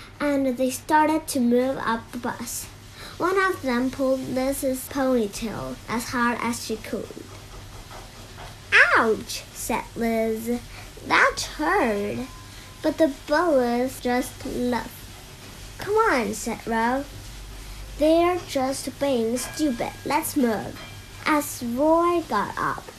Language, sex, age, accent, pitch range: Chinese, male, 10-29, American, 225-300 Hz